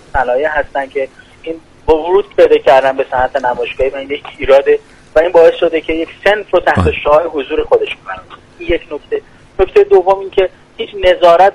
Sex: male